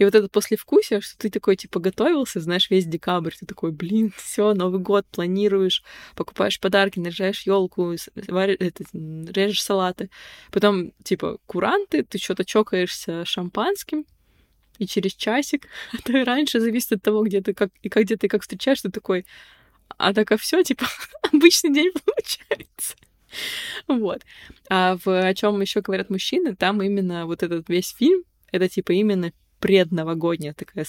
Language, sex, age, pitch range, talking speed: Russian, female, 20-39, 180-215 Hz, 150 wpm